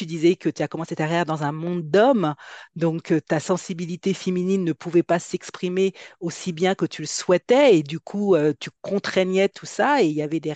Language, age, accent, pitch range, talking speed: French, 40-59, French, 155-190 Hz, 215 wpm